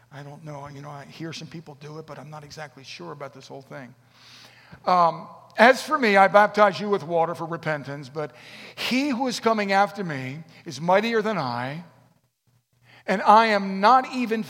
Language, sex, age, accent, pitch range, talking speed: English, male, 50-69, American, 130-215 Hz, 195 wpm